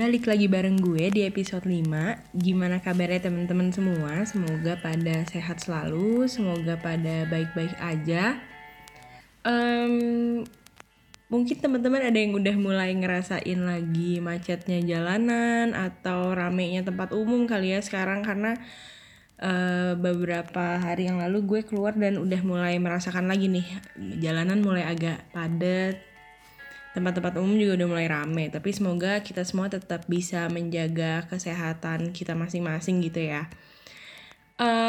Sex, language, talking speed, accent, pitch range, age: female, Indonesian, 125 wpm, native, 175-210 Hz, 20-39